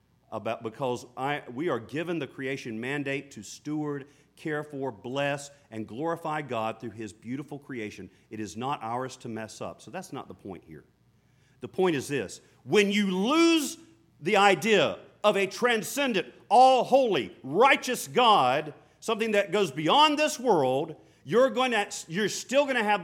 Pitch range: 120-165 Hz